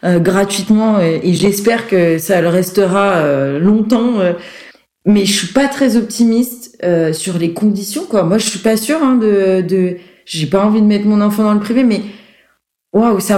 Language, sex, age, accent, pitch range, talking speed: French, female, 20-39, French, 185-235 Hz, 175 wpm